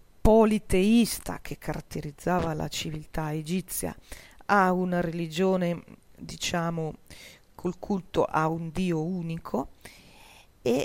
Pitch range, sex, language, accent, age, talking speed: 155-185 Hz, female, Italian, native, 40-59, 95 wpm